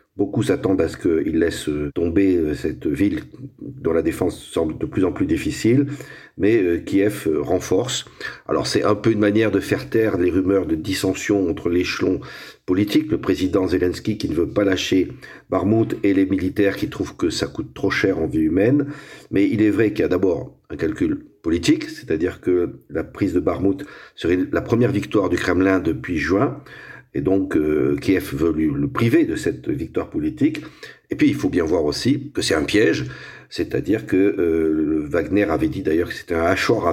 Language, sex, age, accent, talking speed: French, male, 50-69, French, 195 wpm